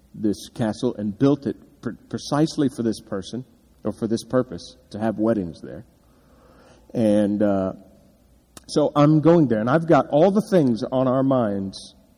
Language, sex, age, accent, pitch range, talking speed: English, male, 40-59, American, 110-125 Hz, 165 wpm